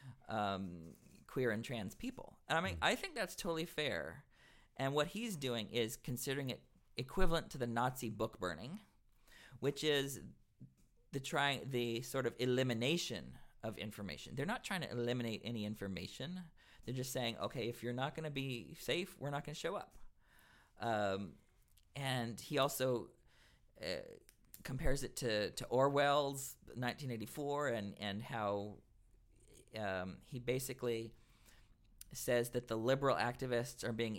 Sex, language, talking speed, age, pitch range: male, English, 145 wpm, 40-59, 105-130 Hz